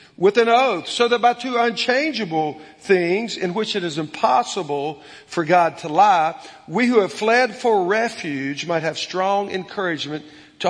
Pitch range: 145-200 Hz